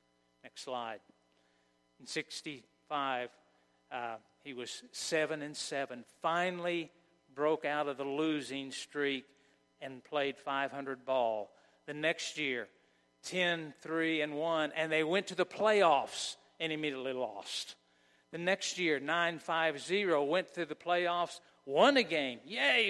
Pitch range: 130-170 Hz